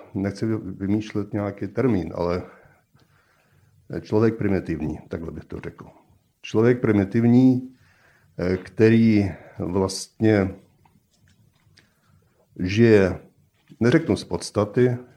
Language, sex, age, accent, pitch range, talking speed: Czech, male, 50-69, native, 95-110 Hz, 75 wpm